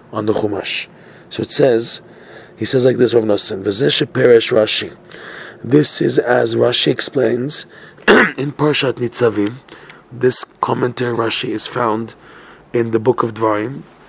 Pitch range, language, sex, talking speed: 110-130 Hz, English, male, 130 wpm